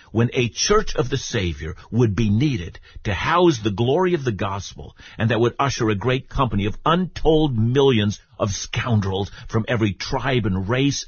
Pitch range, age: 90-125 Hz, 50-69